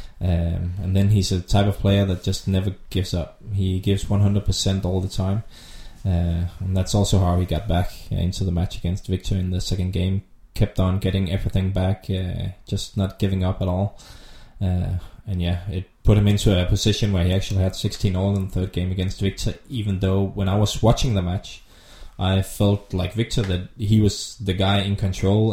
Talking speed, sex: 210 wpm, male